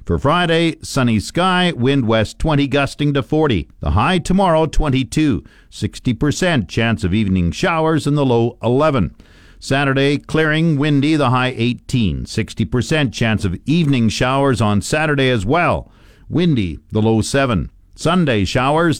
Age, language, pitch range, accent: 50-69, English, 105-150 Hz, American